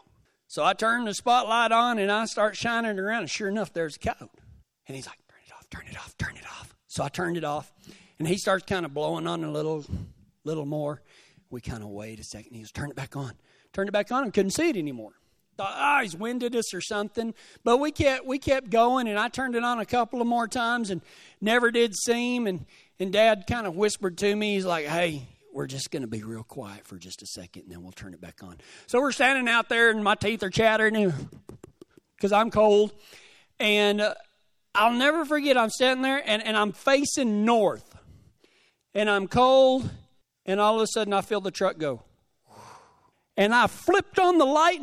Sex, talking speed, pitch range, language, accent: male, 225 wpm, 185-250 Hz, English, American